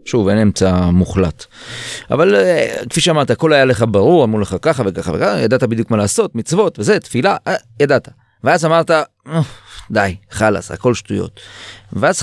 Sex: male